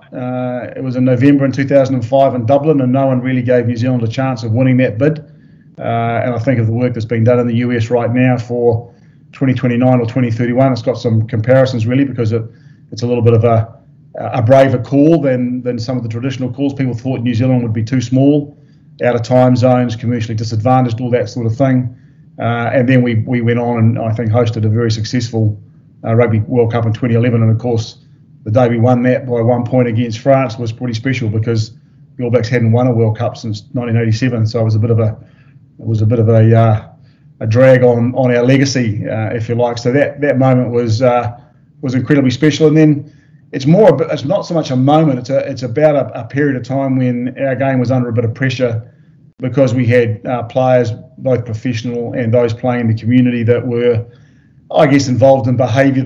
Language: English